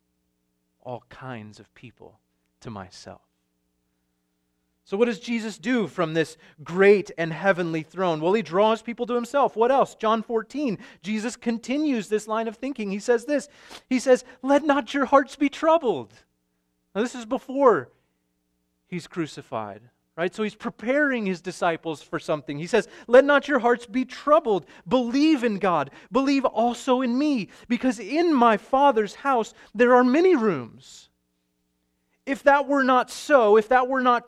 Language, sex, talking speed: English, male, 160 wpm